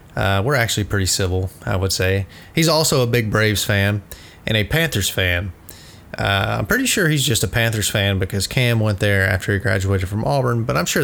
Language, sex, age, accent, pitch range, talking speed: English, male, 30-49, American, 100-125 Hz, 210 wpm